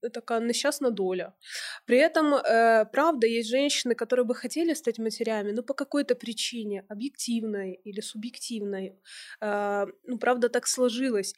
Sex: female